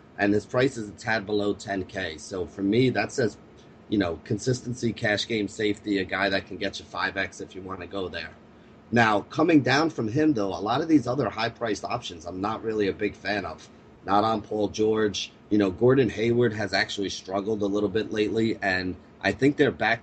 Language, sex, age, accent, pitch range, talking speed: English, male, 30-49, American, 95-110 Hz, 215 wpm